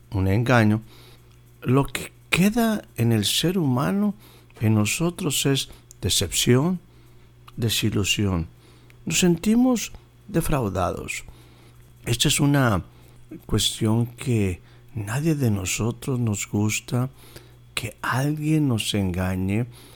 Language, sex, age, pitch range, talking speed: Spanish, male, 60-79, 105-125 Hz, 95 wpm